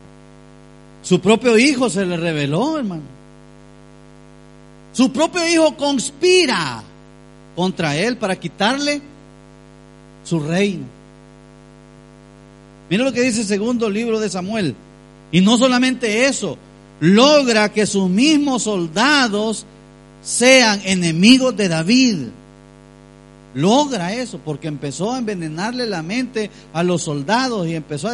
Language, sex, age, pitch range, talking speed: Spanish, male, 40-59, 135-225 Hz, 115 wpm